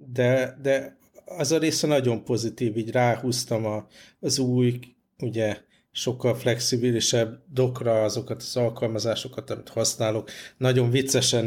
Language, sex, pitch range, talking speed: Hungarian, male, 110-125 Hz, 115 wpm